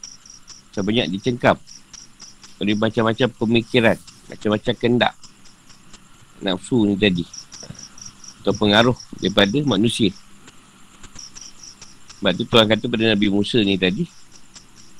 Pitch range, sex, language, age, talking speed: 100-125 Hz, male, Malay, 50-69, 90 wpm